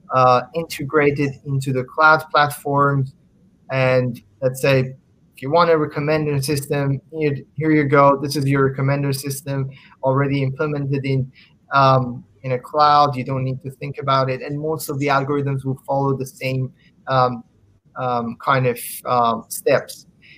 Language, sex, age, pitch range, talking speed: English, male, 20-39, 130-150 Hz, 155 wpm